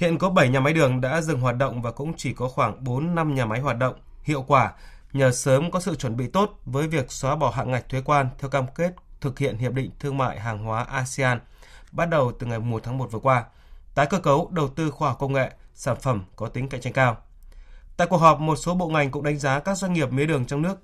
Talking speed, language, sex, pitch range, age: 260 wpm, Vietnamese, male, 130-165 Hz, 20-39